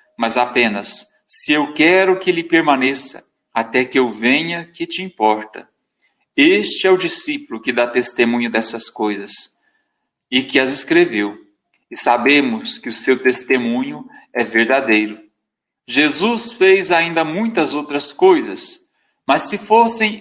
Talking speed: 135 wpm